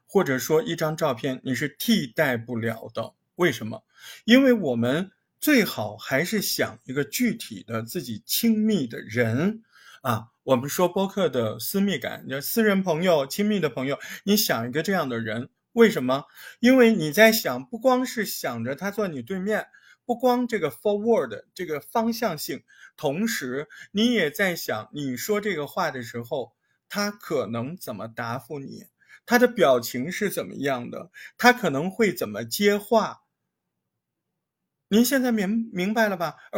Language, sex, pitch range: Chinese, male, 135-215 Hz